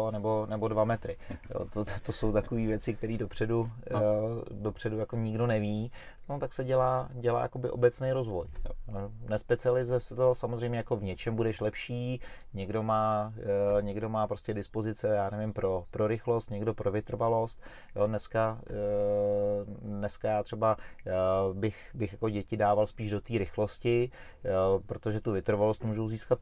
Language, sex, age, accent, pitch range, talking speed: Czech, male, 30-49, native, 100-115 Hz, 140 wpm